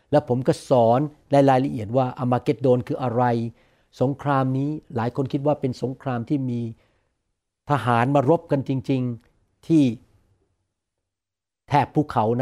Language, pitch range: Thai, 120-155 Hz